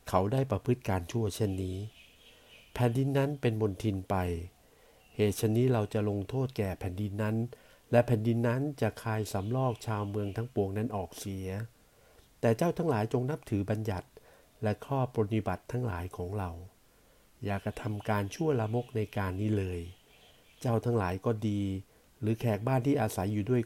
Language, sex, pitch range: Thai, male, 95-120 Hz